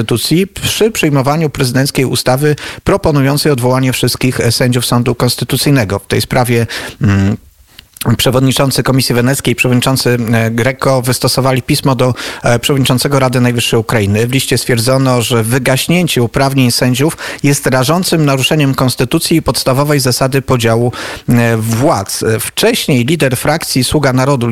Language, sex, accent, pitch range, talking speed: Polish, male, native, 120-145 Hz, 115 wpm